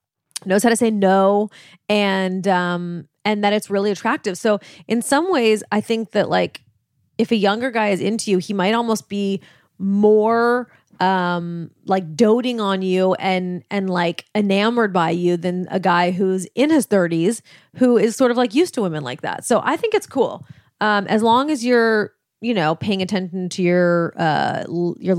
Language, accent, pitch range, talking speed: English, American, 175-225 Hz, 190 wpm